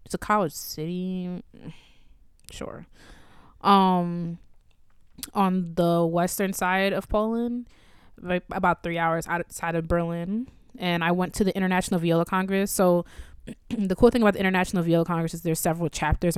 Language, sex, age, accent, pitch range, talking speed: English, female, 20-39, American, 160-190 Hz, 145 wpm